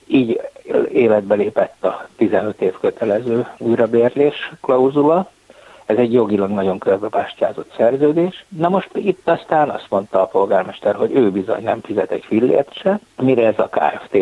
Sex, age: male, 60-79